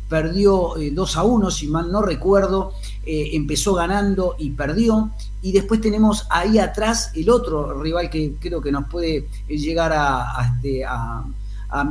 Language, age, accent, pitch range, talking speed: Spanish, 40-59, Argentinian, 145-190 Hz, 165 wpm